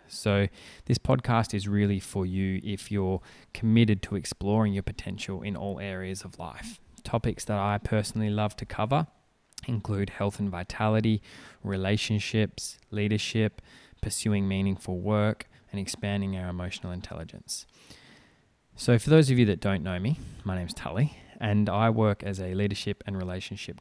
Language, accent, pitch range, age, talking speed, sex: English, Australian, 95-110 Hz, 20-39, 155 wpm, male